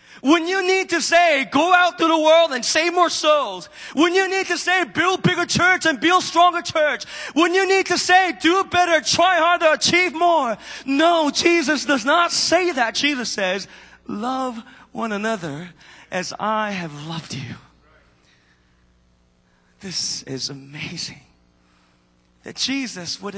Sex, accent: male, American